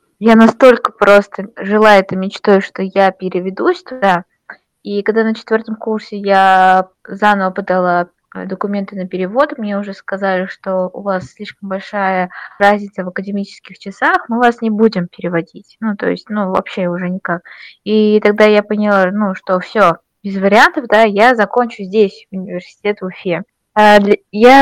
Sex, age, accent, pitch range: female, 20-39, native, 185-220 Hz